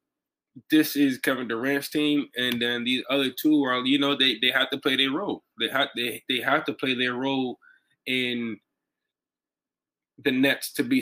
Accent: American